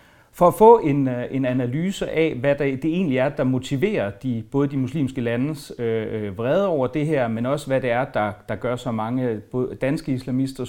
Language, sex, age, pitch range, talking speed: Danish, male, 30-49, 115-150 Hz, 200 wpm